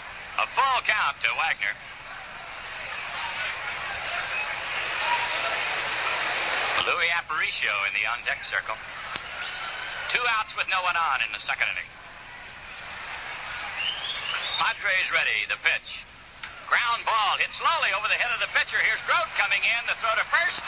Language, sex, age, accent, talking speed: English, male, 60-79, American, 125 wpm